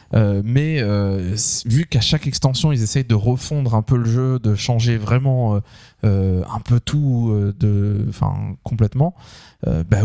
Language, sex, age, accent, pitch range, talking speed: French, male, 20-39, French, 105-130 Hz, 165 wpm